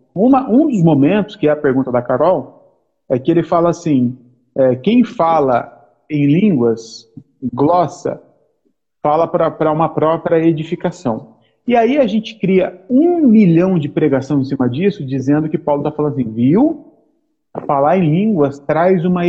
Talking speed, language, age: 150 wpm, Portuguese, 40-59